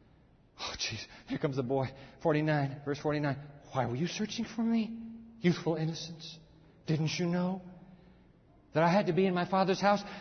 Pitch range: 155-205 Hz